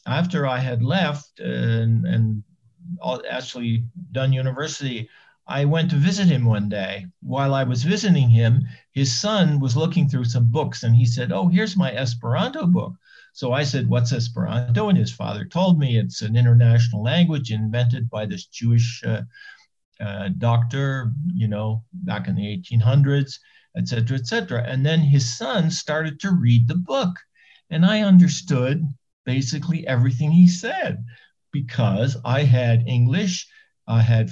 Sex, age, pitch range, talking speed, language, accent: male, 50-69, 120-170 Hz, 160 wpm, English, American